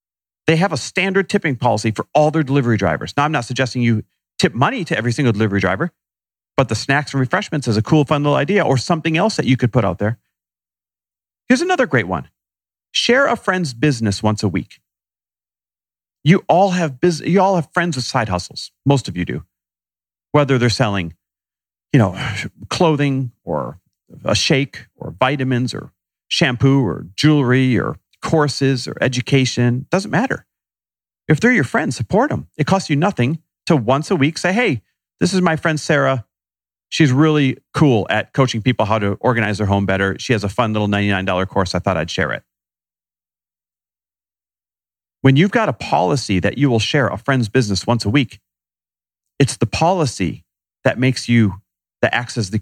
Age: 40-59